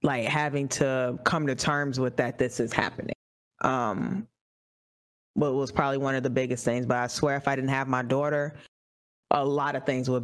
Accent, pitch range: American, 125-155 Hz